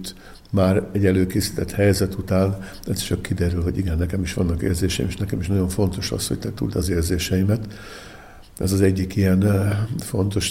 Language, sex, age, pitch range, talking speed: Hungarian, male, 60-79, 85-100 Hz, 165 wpm